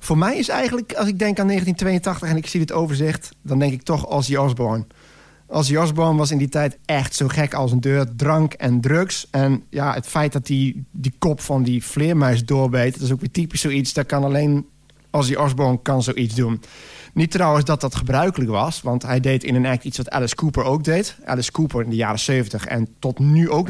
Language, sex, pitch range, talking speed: Dutch, male, 125-155 Hz, 230 wpm